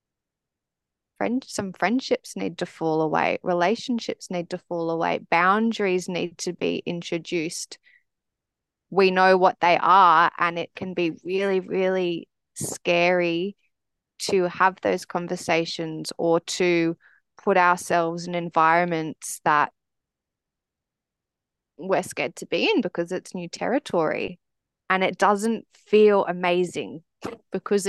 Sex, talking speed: female, 115 wpm